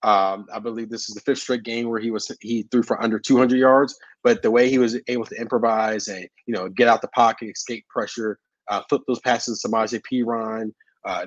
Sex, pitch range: male, 115-140 Hz